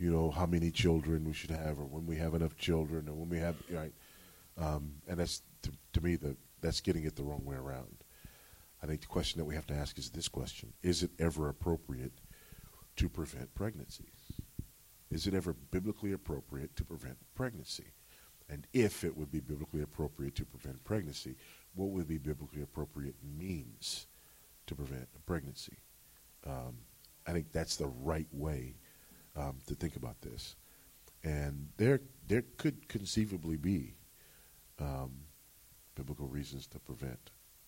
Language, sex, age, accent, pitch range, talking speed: English, male, 40-59, American, 70-85 Hz, 160 wpm